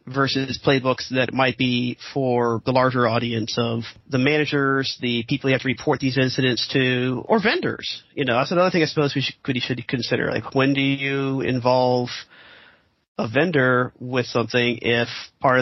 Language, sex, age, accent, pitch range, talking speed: English, male, 40-59, American, 120-140 Hz, 175 wpm